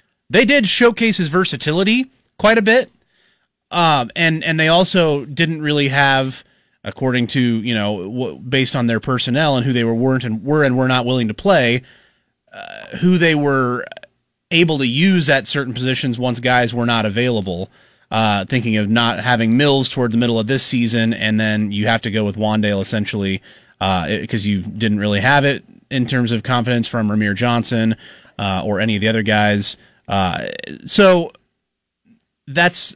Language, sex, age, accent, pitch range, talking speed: English, male, 30-49, American, 115-160 Hz, 180 wpm